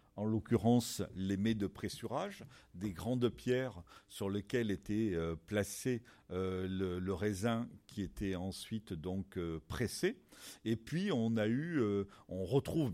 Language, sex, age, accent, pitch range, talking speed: French, male, 50-69, French, 95-120 Hz, 110 wpm